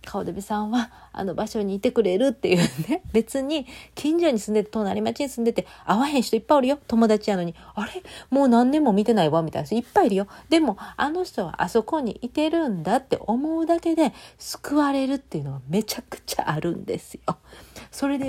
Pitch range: 165-245 Hz